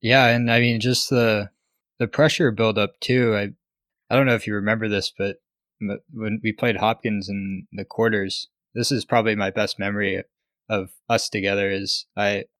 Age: 20-39